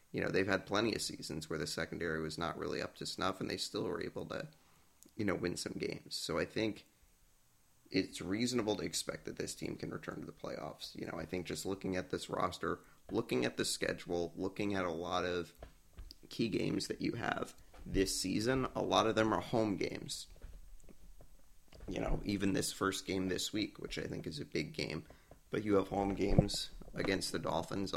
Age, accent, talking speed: 30-49, American, 210 wpm